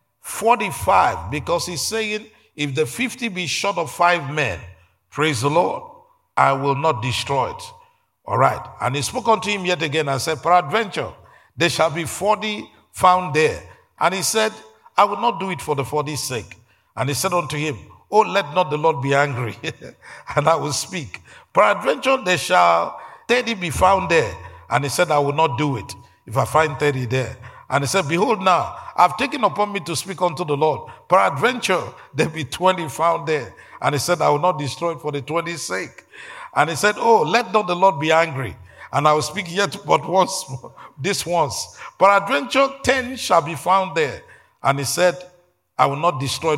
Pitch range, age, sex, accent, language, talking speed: 130-185 Hz, 50-69, male, Nigerian, English, 195 wpm